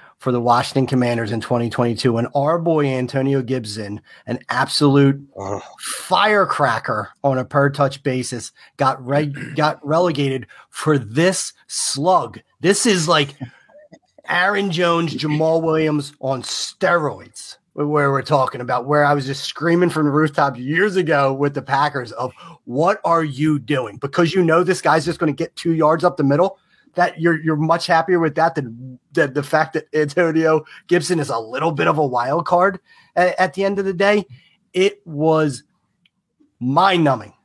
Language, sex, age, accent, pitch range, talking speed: English, male, 30-49, American, 130-165 Hz, 160 wpm